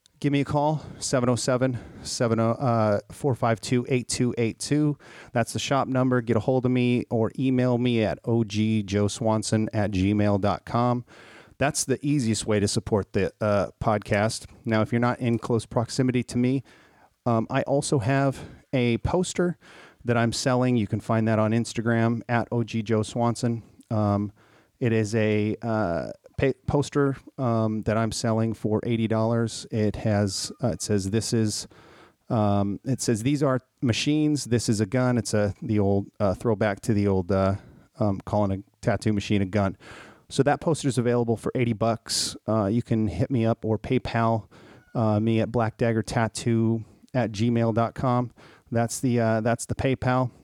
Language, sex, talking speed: English, male, 155 wpm